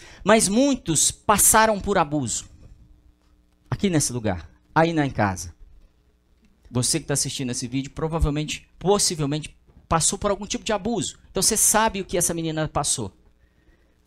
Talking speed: 145 wpm